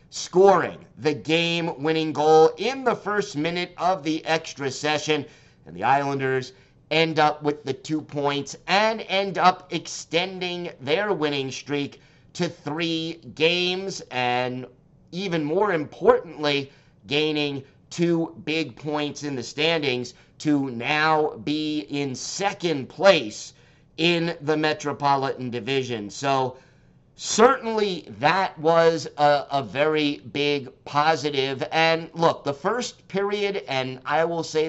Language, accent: English, American